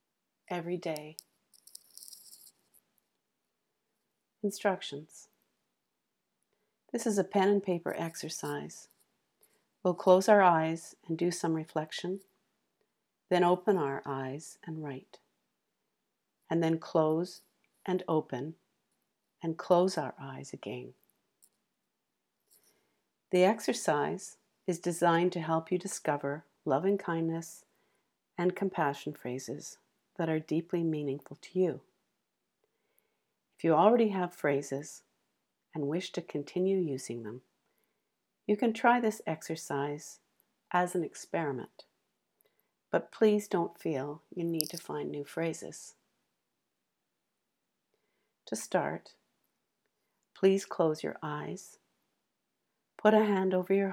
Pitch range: 155-190 Hz